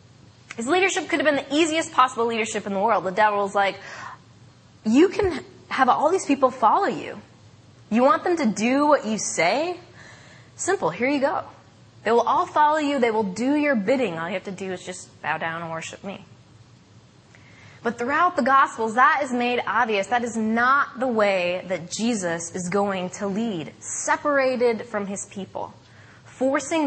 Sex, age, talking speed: female, 20-39, 180 wpm